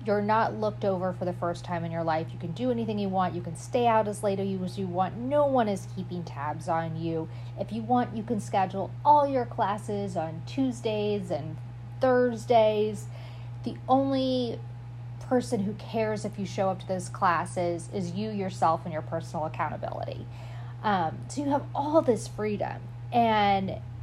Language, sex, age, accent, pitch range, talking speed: English, female, 30-49, American, 120-195 Hz, 180 wpm